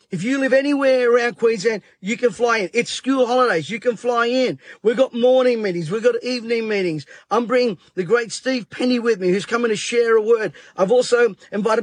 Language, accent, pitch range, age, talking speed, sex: English, Australian, 225-265 Hz, 40-59, 215 wpm, male